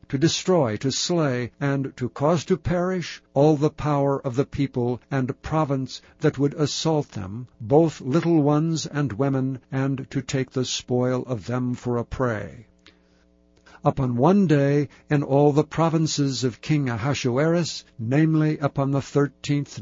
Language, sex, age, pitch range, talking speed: English, male, 60-79, 125-155 Hz, 150 wpm